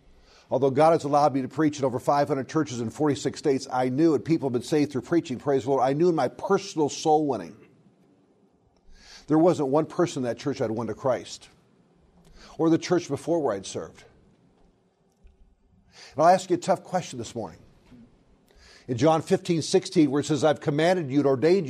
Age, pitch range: 50-69, 130-170 Hz